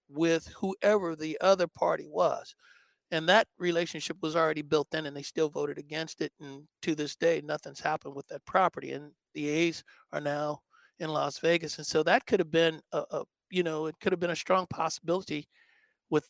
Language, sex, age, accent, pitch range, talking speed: English, male, 60-79, American, 150-170 Hz, 200 wpm